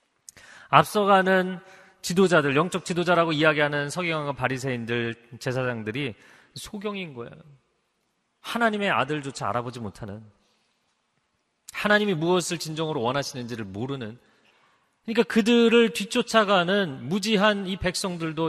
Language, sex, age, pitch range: Korean, male, 30-49, 130-185 Hz